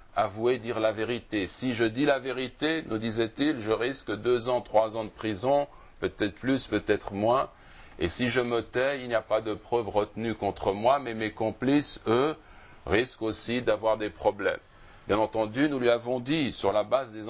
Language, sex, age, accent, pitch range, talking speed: French, male, 60-79, French, 105-125 Hz, 195 wpm